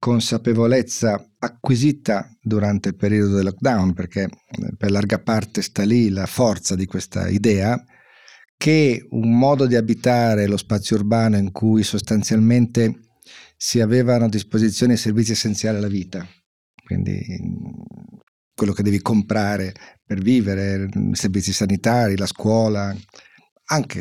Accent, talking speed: native, 125 wpm